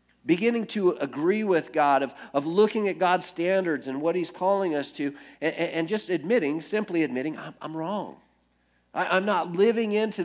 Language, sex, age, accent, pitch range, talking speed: English, male, 50-69, American, 150-195 Hz, 175 wpm